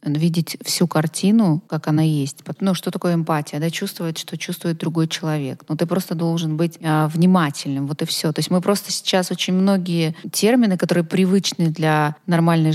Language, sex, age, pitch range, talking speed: Russian, female, 20-39, 165-195 Hz, 190 wpm